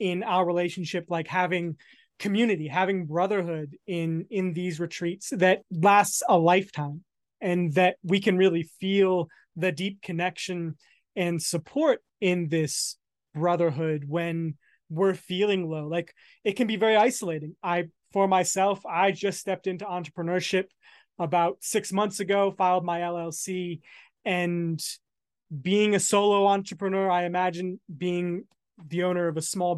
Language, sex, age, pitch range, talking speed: English, male, 20-39, 170-195 Hz, 135 wpm